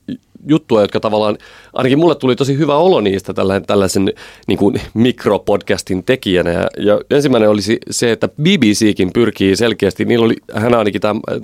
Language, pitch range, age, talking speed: Finnish, 95-120 Hz, 30-49, 145 wpm